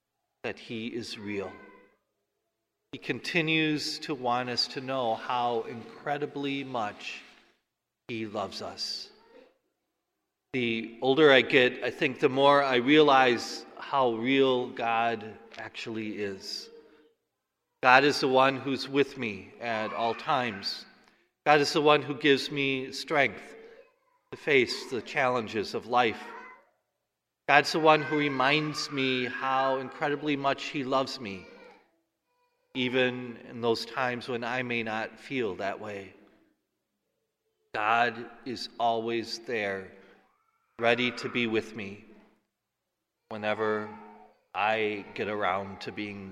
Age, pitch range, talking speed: 40-59, 115-150 Hz, 120 wpm